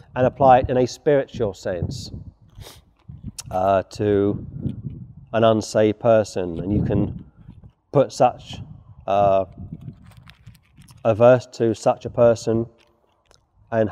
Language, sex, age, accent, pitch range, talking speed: English, male, 40-59, British, 105-135 Hz, 110 wpm